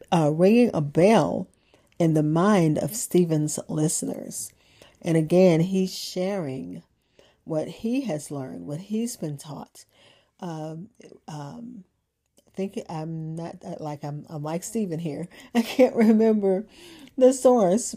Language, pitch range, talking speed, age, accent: English, 160-205 Hz, 130 wpm, 40-59, American